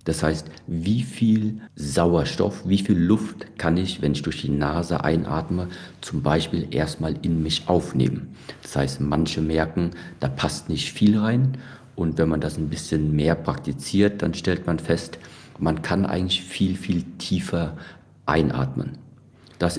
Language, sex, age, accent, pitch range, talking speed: German, male, 50-69, German, 80-100 Hz, 155 wpm